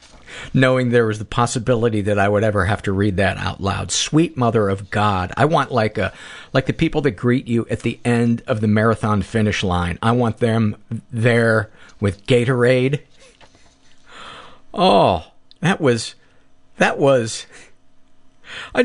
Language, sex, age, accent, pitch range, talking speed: English, male, 50-69, American, 100-130 Hz, 155 wpm